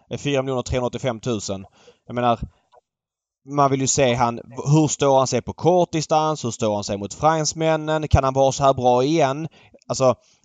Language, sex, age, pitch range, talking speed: Swedish, male, 20-39, 120-140 Hz, 185 wpm